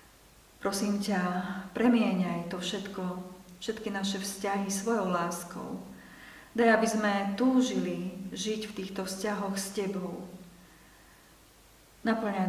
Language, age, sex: Slovak, 40-59, female